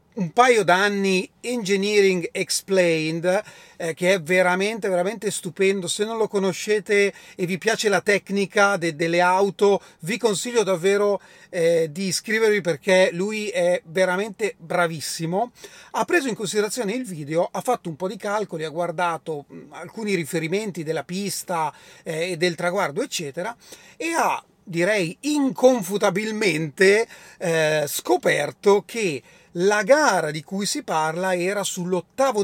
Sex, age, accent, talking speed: male, 30-49, native, 130 wpm